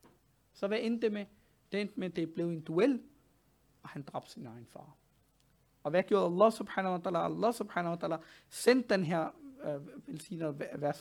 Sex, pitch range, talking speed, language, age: male, 150-205 Hz, 190 wpm, Danish, 50-69